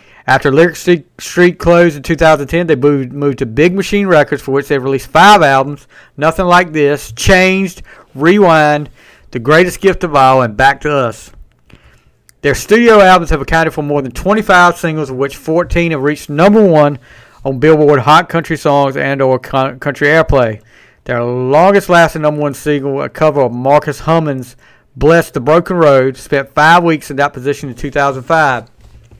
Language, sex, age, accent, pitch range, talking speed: English, male, 50-69, American, 130-165 Hz, 165 wpm